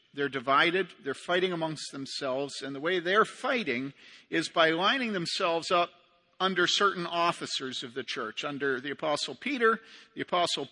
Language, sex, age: English, male, 50-69